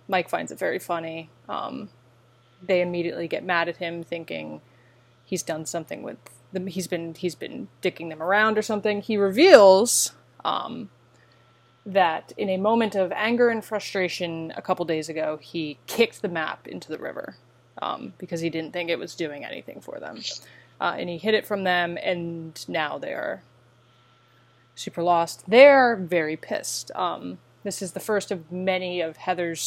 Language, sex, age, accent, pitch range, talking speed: English, female, 20-39, American, 155-195 Hz, 170 wpm